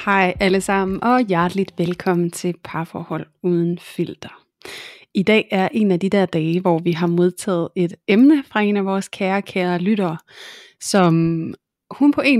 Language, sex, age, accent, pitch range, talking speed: Danish, female, 30-49, native, 170-200 Hz, 165 wpm